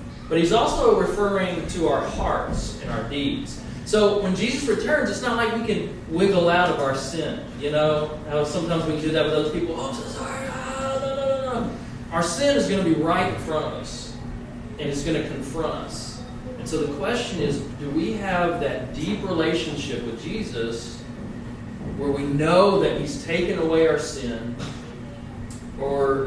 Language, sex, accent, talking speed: English, male, American, 185 wpm